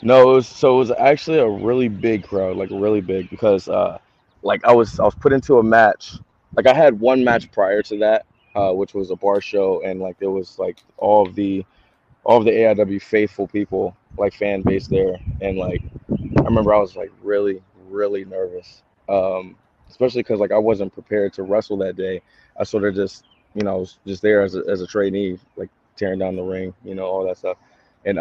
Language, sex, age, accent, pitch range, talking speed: English, male, 20-39, American, 95-115 Hz, 220 wpm